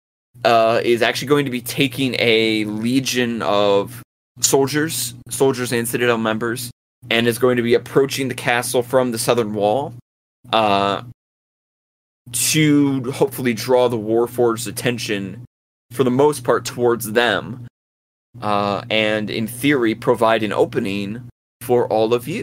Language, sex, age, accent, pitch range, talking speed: English, male, 20-39, American, 110-125 Hz, 135 wpm